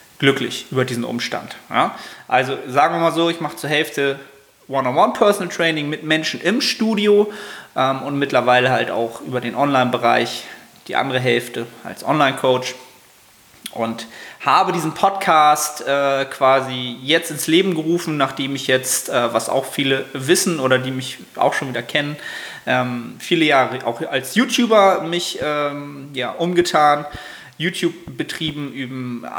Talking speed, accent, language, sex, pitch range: 140 wpm, German, German, male, 130-160 Hz